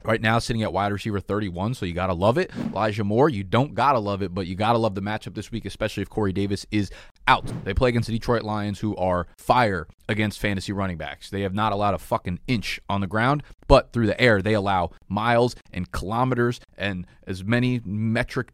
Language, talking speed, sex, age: English, 225 wpm, male, 30-49